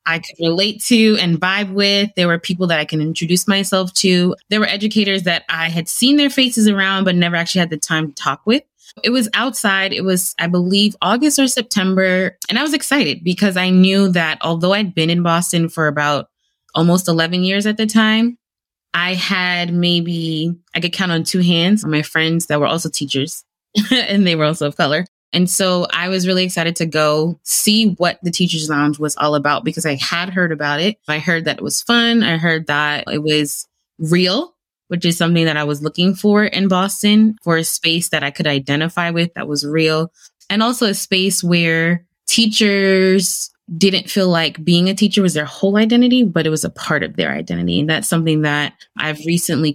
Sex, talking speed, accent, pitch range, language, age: female, 205 wpm, American, 160-200 Hz, English, 20-39